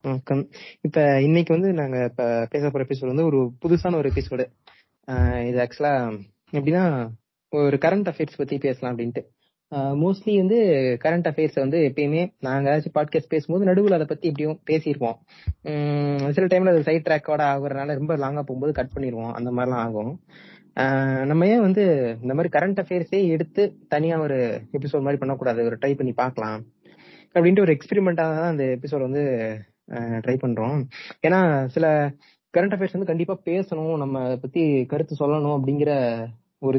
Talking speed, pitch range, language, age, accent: 75 wpm, 130-170 Hz, Tamil, 20-39, native